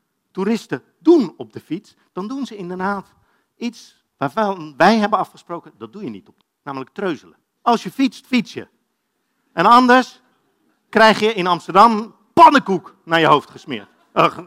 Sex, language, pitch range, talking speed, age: male, Dutch, 170-250 Hz, 155 wpm, 50-69